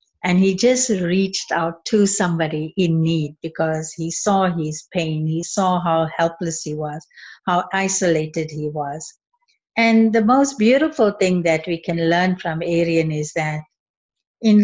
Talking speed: 155 wpm